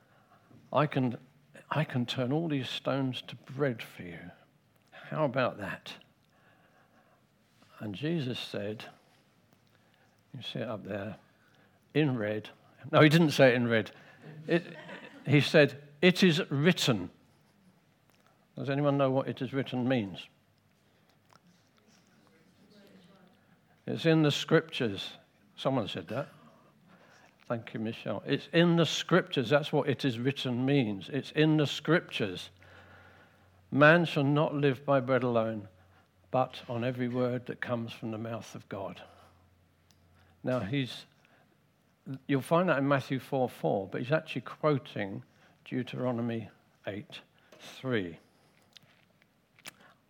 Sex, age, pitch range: male, 60-79, 115-145 Hz